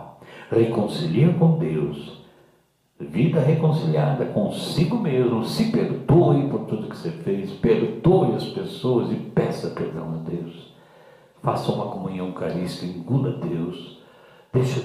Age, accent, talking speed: 60-79, Brazilian, 120 wpm